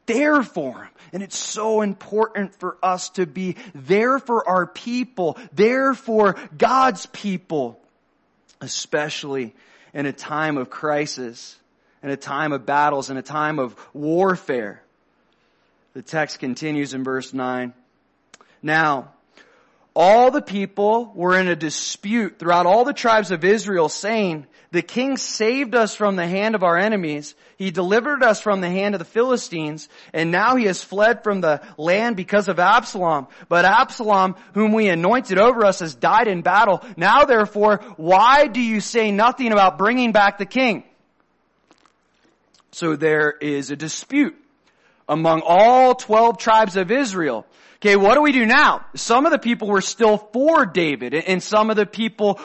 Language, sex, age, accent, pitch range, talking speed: English, male, 30-49, American, 165-230 Hz, 160 wpm